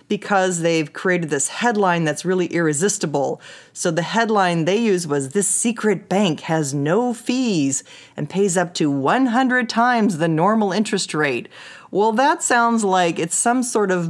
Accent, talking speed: American, 160 wpm